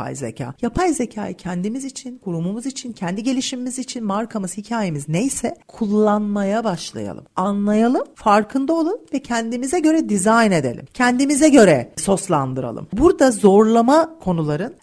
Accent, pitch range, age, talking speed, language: native, 185-265 Hz, 40-59, 115 wpm, Turkish